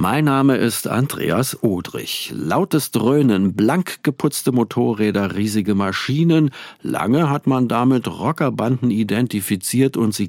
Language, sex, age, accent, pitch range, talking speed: German, male, 50-69, German, 105-125 Hz, 115 wpm